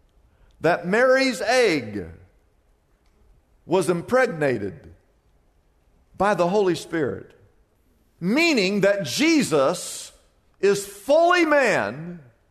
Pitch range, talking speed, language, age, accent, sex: 170-285 Hz, 70 wpm, English, 50-69, American, male